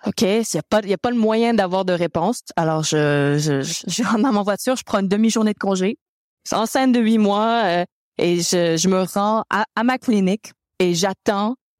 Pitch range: 180-235 Hz